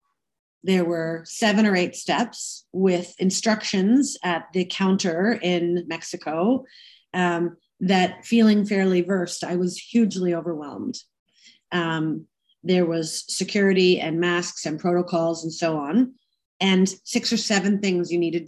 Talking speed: 130 wpm